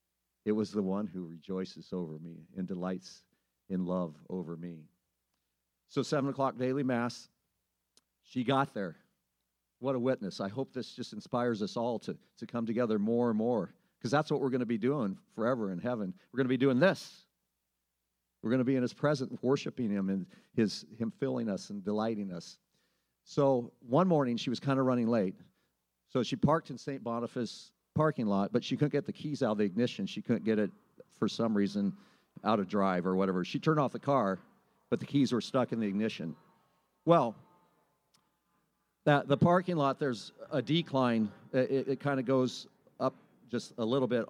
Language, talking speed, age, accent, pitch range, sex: English, 195 wpm, 50-69, American, 100-140 Hz, male